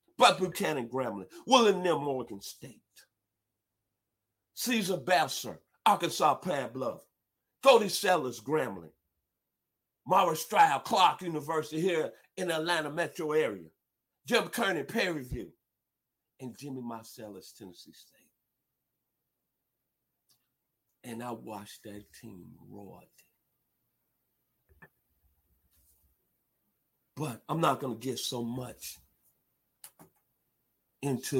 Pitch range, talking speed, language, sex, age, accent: 100-135 Hz, 95 wpm, English, male, 50-69, American